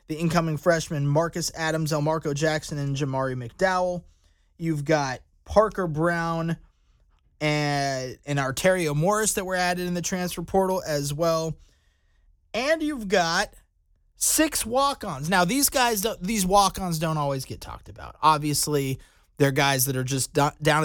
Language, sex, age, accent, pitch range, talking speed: English, male, 20-39, American, 140-180 Hz, 140 wpm